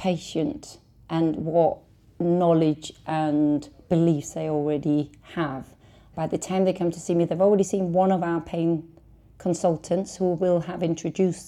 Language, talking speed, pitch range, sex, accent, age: English, 150 wpm, 155-185 Hz, female, British, 40-59